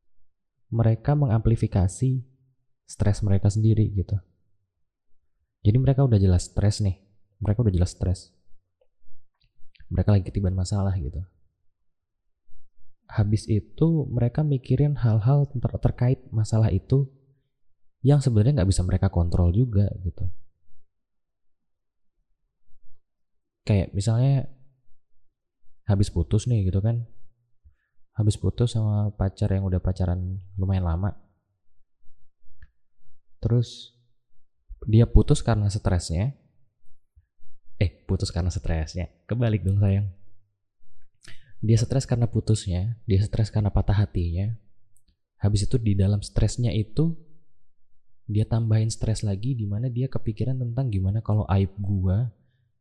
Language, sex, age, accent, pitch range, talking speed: Indonesian, male, 20-39, native, 90-115 Hz, 105 wpm